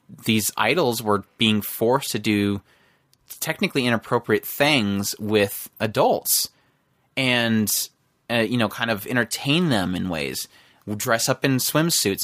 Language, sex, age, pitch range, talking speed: English, male, 20-39, 110-135 Hz, 130 wpm